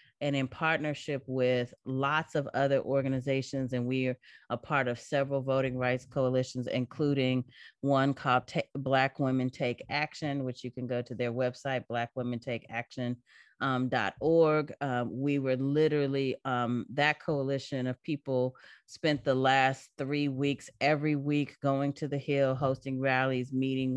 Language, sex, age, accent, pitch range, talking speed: English, female, 30-49, American, 130-160 Hz, 140 wpm